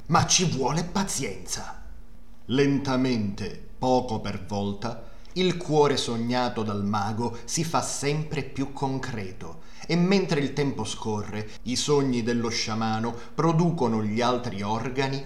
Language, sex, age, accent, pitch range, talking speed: Italian, male, 30-49, native, 110-145 Hz, 120 wpm